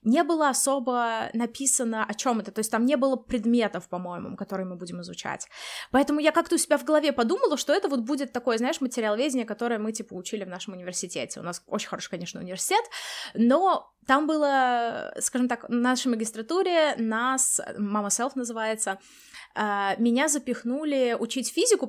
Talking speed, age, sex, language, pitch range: 175 wpm, 20-39, female, Russian, 210-270 Hz